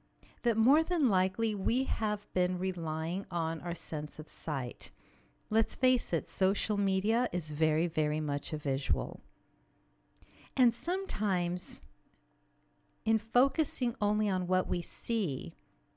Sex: female